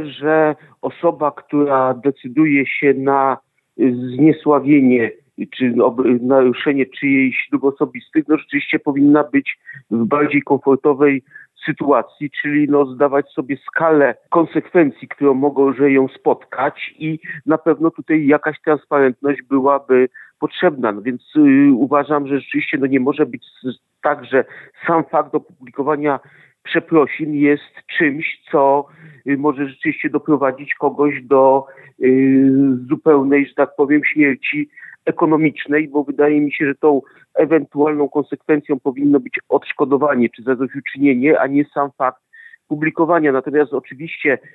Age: 50-69